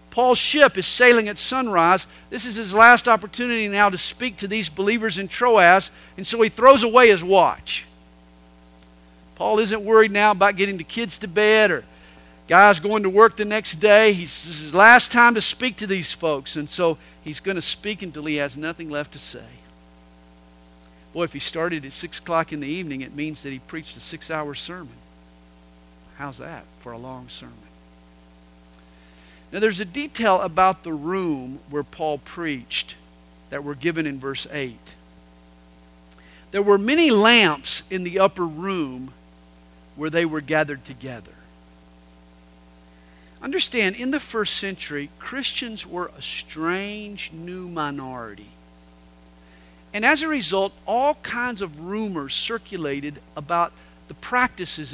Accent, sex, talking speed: American, male, 155 wpm